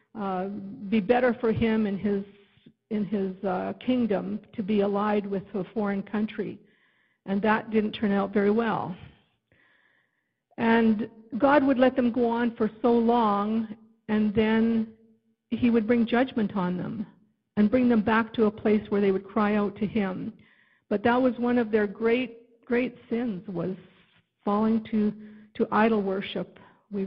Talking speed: 160 wpm